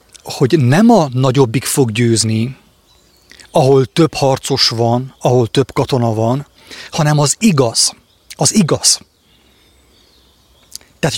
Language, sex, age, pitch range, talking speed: English, male, 30-49, 120-155 Hz, 105 wpm